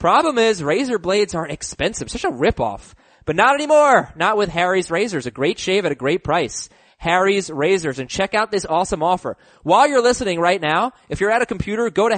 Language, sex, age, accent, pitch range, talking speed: English, male, 20-39, American, 175-220 Hz, 210 wpm